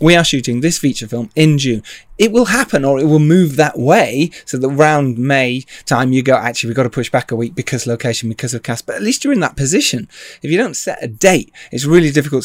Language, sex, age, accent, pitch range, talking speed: English, male, 30-49, British, 120-165 Hz, 255 wpm